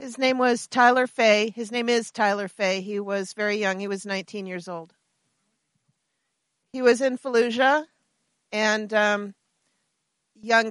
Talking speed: 150 wpm